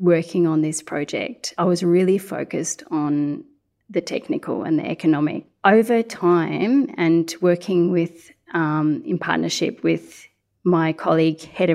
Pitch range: 160-200 Hz